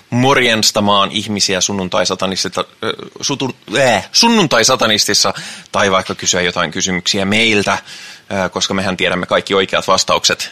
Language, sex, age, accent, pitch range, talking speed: Finnish, male, 20-39, native, 95-110 Hz, 115 wpm